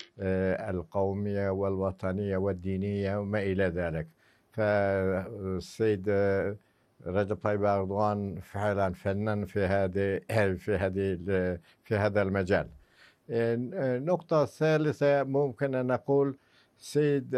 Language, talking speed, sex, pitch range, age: Arabic, 85 wpm, male, 100-125 Hz, 60-79